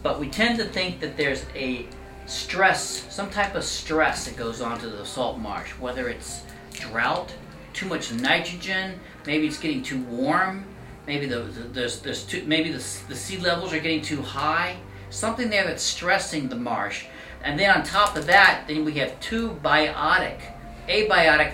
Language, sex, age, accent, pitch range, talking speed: English, male, 40-59, American, 115-170 Hz, 160 wpm